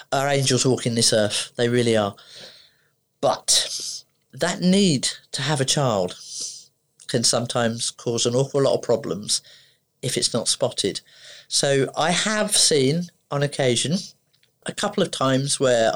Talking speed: 145 wpm